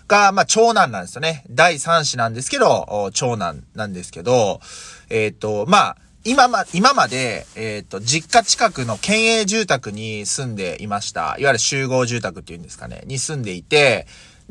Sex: male